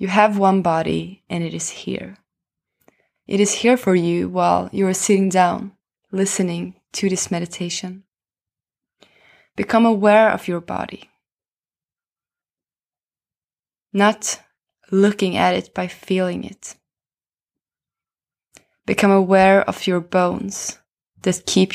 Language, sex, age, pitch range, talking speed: English, female, 20-39, 170-195 Hz, 115 wpm